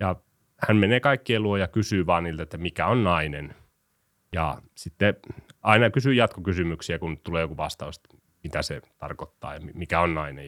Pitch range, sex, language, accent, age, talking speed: 85-105 Hz, male, Finnish, native, 30-49, 165 wpm